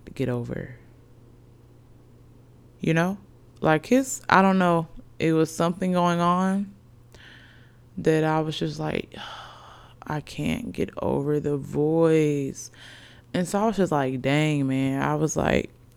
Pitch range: 120-165 Hz